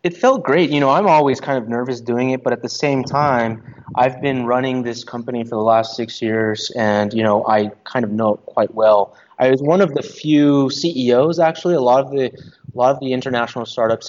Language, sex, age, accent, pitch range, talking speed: English, male, 30-49, American, 110-130 Hz, 235 wpm